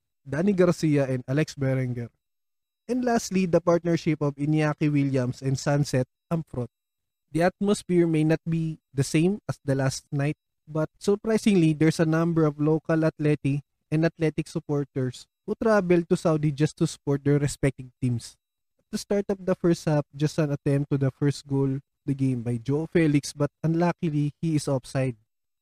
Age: 20-39